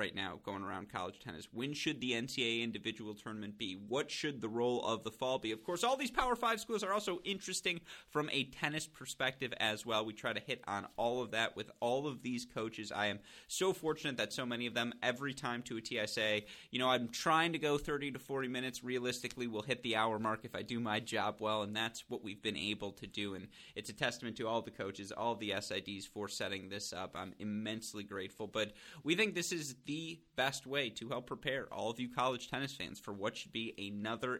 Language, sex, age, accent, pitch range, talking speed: English, male, 30-49, American, 105-130 Hz, 235 wpm